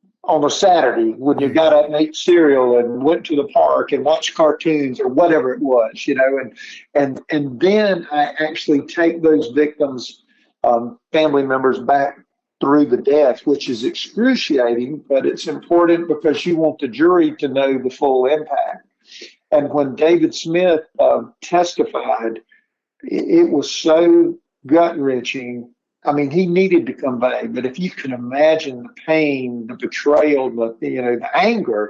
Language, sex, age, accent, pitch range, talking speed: English, male, 50-69, American, 140-180 Hz, 165 wpm